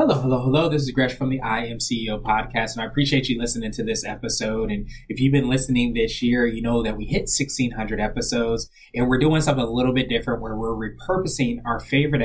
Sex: male